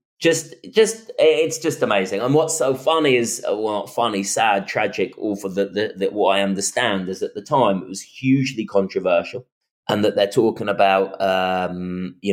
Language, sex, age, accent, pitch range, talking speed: English, male, 30-49, British, 100-135 Hz, 180 wpm